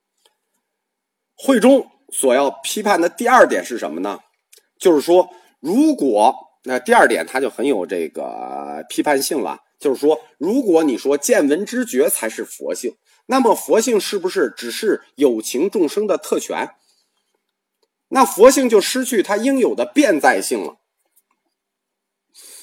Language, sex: Chinese, male